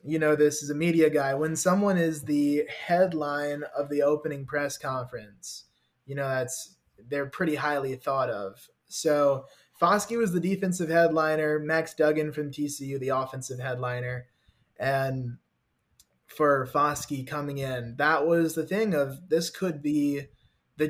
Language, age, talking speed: English, 20-39, 150 wpm